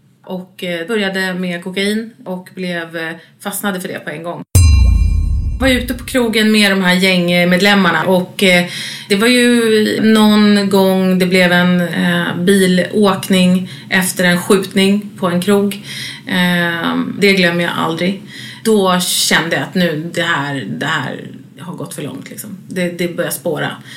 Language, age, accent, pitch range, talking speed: English, 30-49, Swedish, 175-210 Hz, 145 wpm